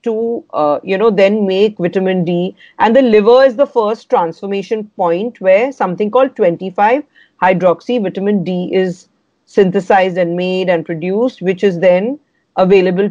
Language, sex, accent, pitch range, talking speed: Hindi, female, native, 175-245 Hz, 150 wpm